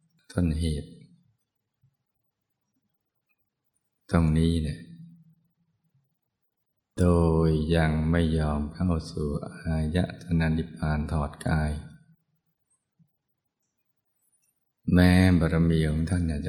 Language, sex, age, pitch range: Thai, male, 20-39, 80-120 Hz